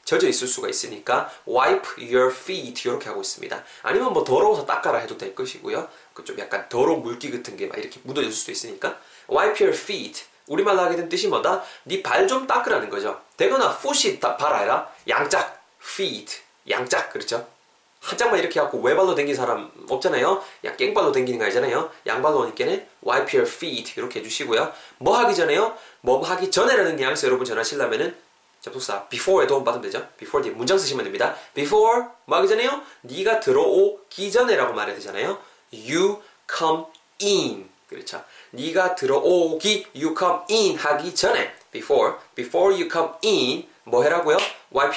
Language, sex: Korean, male